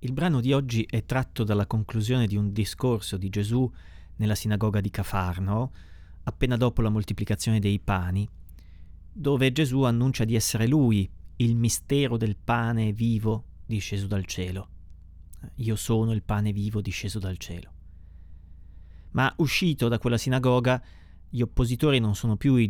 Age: 30-49